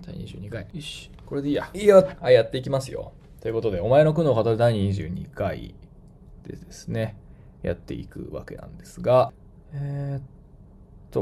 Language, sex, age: Japanese, male, 20-39